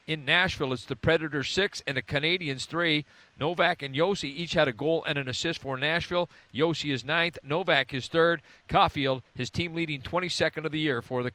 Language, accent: English, American